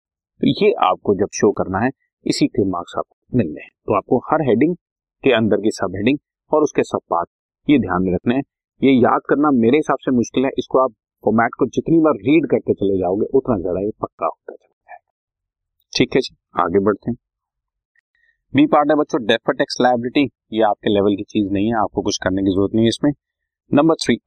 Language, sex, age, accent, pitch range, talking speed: Hindi, male, 30-49, native, 105-145 Hz, 125 wpm